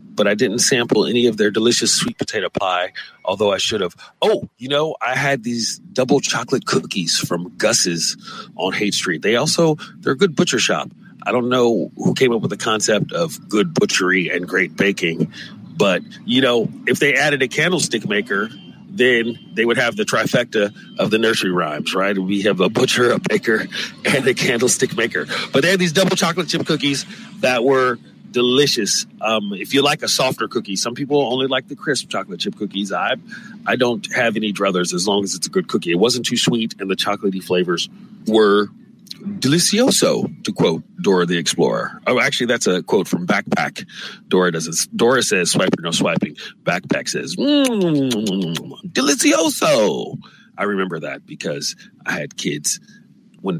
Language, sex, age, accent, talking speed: English, male, 40-59, American, 180 wpm